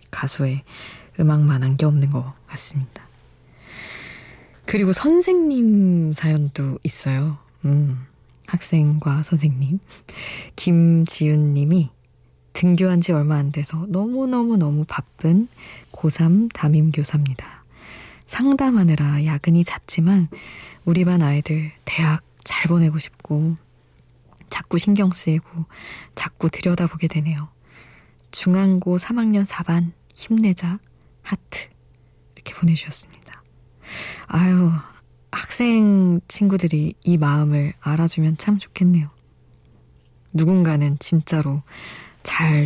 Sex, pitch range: female, 140-175 Hz